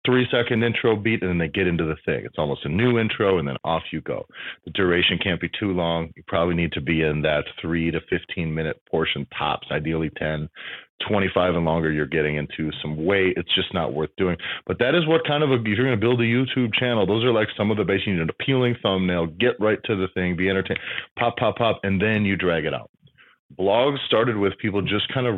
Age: 30-49